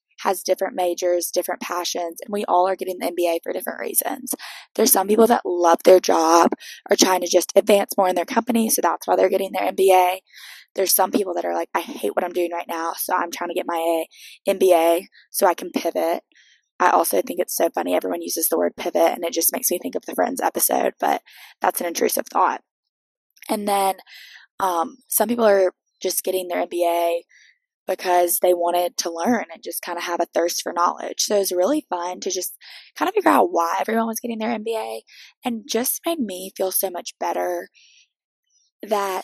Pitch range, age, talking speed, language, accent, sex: 175-215 Hz, 20-39, 210 wpm, English, American, female